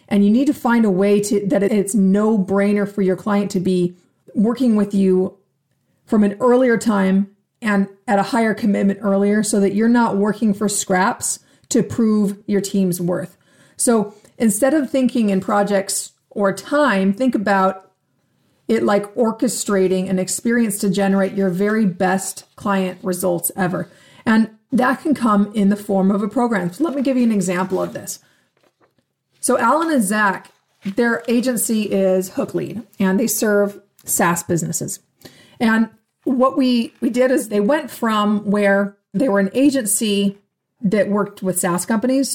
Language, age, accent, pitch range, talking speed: English, 30-49, American, 190-225 Hz, 165 wpm